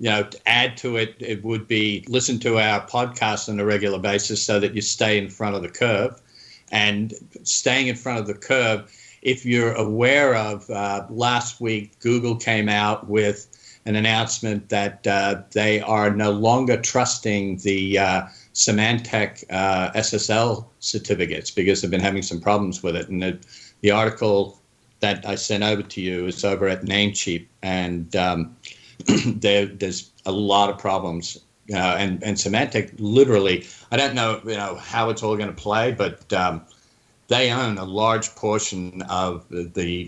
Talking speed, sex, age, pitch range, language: 170 wpm, male, 50-69, 95-110 Hz, English